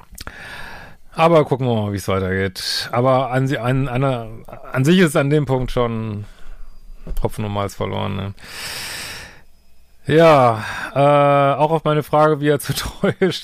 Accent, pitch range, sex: German, 110-150 Hz, male